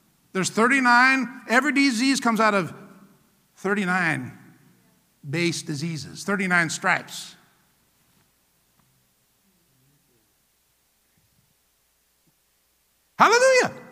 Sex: male